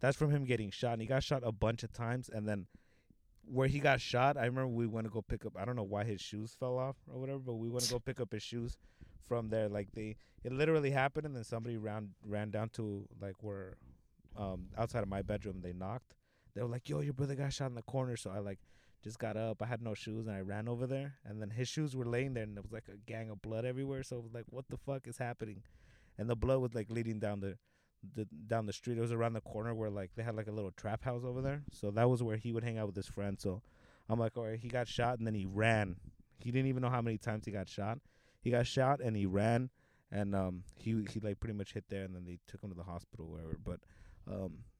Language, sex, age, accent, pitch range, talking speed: English, male, 20-39, American, 105-125 Hz, 280 wpm